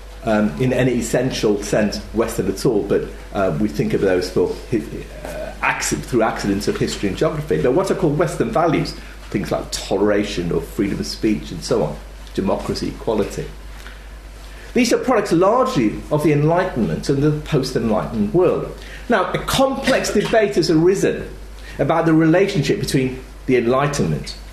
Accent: British